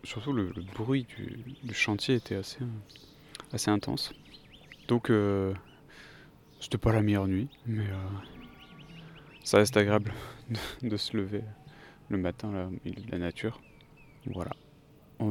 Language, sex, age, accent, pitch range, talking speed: French, male, 30-49, French, 95-135 Hz, 135 wpm